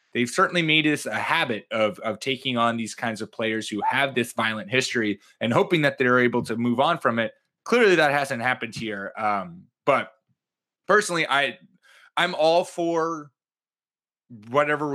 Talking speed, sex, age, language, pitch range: 175 wpm, male, 20-39, English, 110-135 Hz